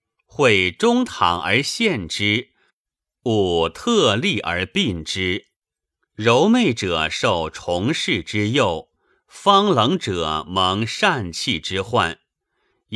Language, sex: Chinese, male